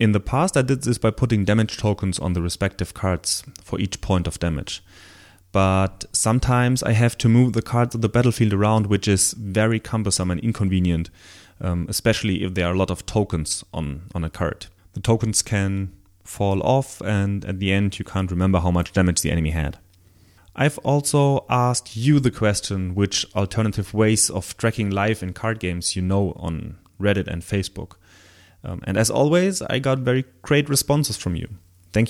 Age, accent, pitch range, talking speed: 30-49, German, 95-115 Hz, 190 wpm